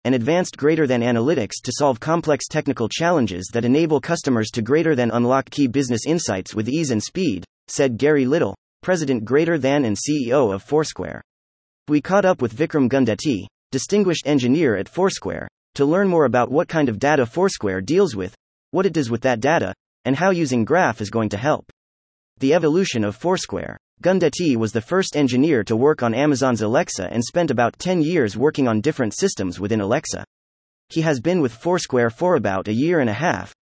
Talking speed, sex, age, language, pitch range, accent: 190 wpm, male, 30-49, English, 110-160 Hz, American